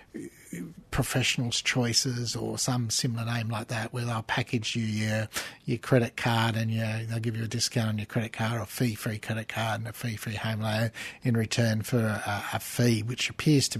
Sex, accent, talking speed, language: male, Australian, 195 wpm, English